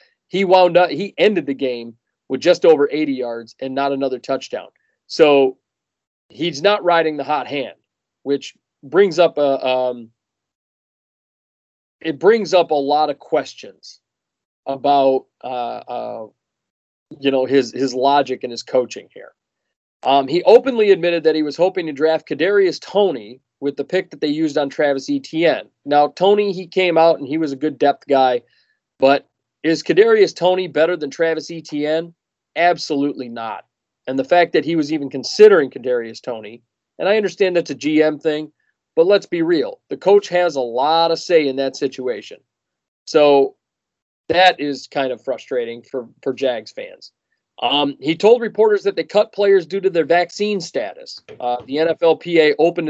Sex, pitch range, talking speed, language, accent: male, 140-185 Hz, 170 wpm, English, American